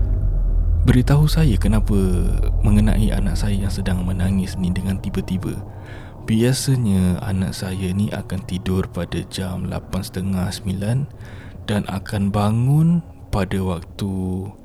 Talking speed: 110 wpm